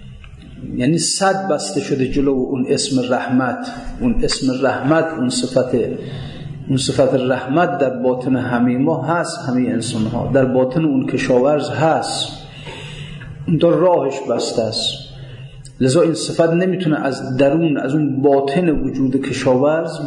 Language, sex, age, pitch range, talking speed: Persian, male, 40-59, 125-160 Hz, 135 wpm